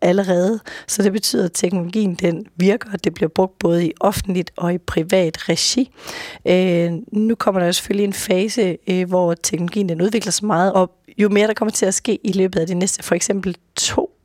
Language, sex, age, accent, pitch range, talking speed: Danish, female, 30-49, native, 180-205 Hz, 200 wpm